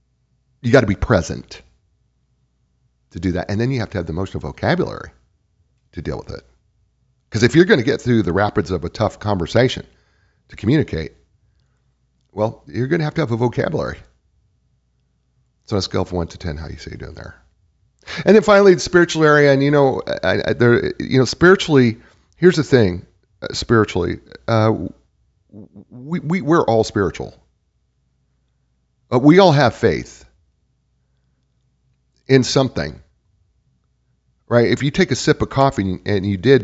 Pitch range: 95-130 Hz